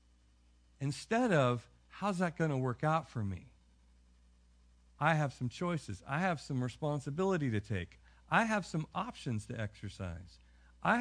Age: 50-69